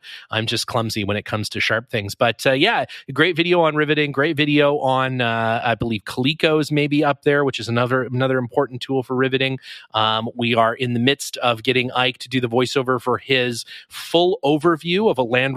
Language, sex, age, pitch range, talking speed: English, male, 30-49, 115-150 Hz, 210 wpm